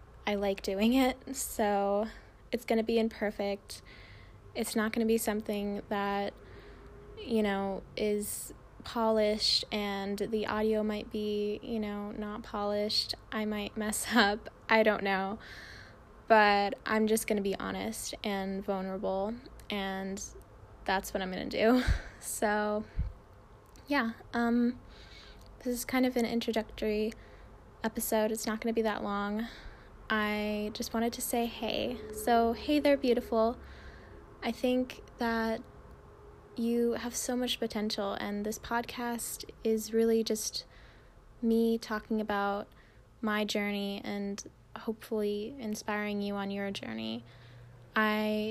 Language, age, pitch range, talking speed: English, 20-39, 205-230 Hz, 130 wpm